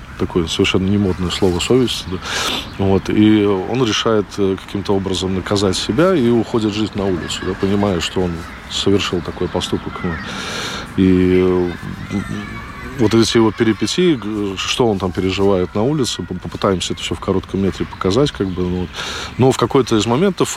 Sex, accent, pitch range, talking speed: male, native, 95-110 Hz, 150 wpm